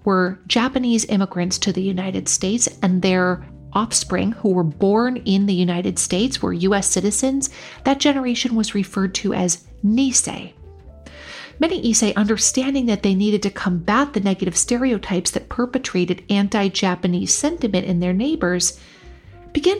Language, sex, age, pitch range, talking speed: English, female, 40-59, 185-245 Hz, 140 wpm